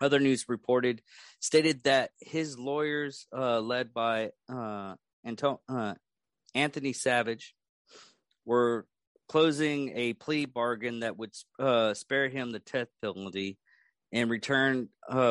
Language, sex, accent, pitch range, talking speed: English, male, American, 110-130 Hz, 120 wpm